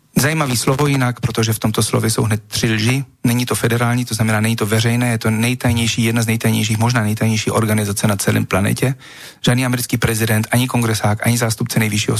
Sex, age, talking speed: male, 40-59, 190 wpm